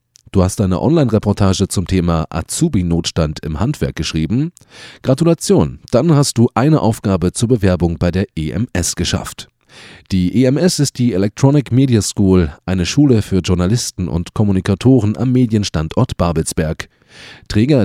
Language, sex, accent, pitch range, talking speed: German, male, German, 85-115 Hz, 130 wpm